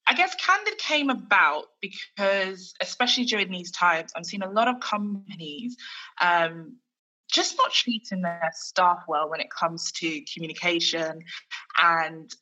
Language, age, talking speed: English, 20-39, 140 wpm